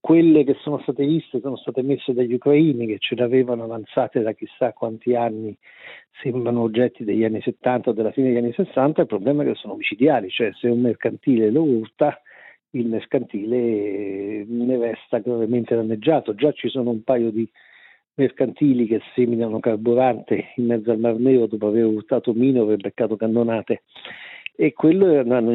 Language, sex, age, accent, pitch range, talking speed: Italian, male, 50-69, native, 115-140 Hz, 170 wpm